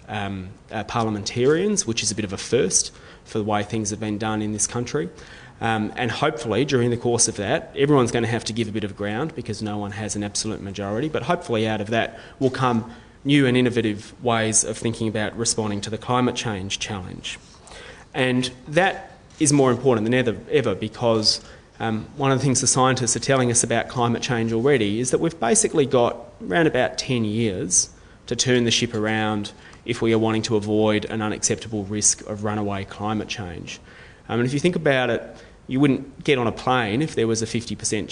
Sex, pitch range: male, 105-120 Hz